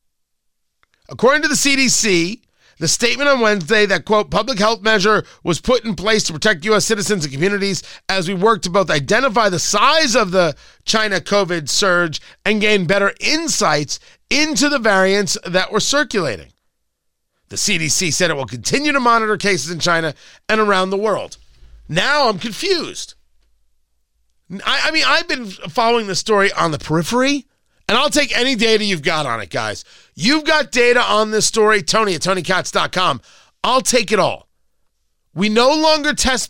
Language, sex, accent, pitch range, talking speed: English, male, American, 175-245 Hz, 170 wpm